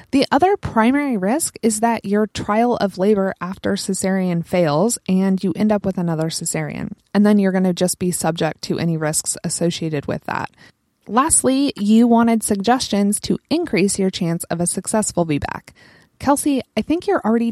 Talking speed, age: 175 wpm, 20-39